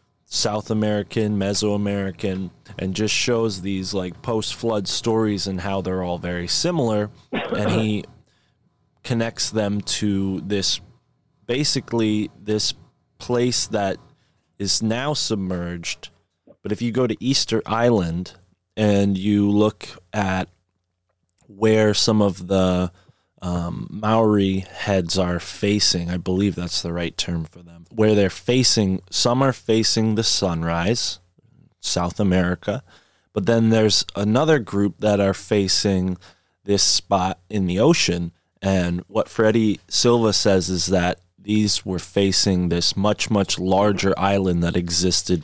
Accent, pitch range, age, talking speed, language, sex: American, 90-110 Hz, 20-39, 130 wpm, English, male